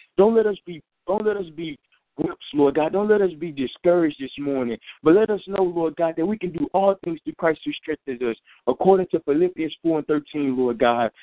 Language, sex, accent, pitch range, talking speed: English, male, American, 150-195 Hz, 215 wpm